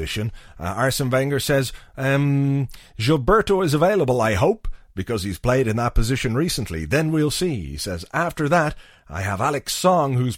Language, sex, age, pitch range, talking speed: English, male, 30-49, 100-155 Hz, 170 wpm